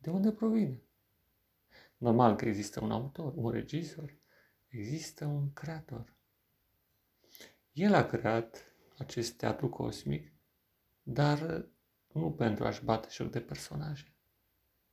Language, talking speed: Romanian, 110 wpm